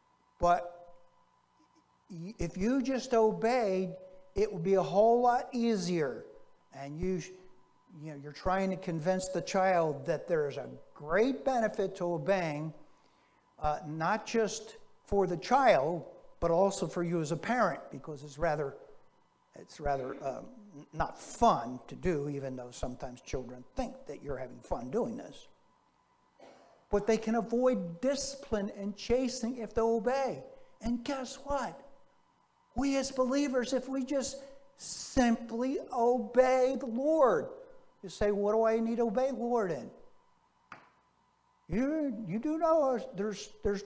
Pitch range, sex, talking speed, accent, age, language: 180-255 Hz, male, 140 wpm, American, 60-79, English